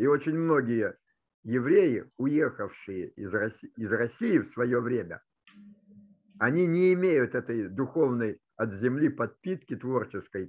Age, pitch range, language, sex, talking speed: 50-69, 110-150 Hz, Russian, male, 115 wpm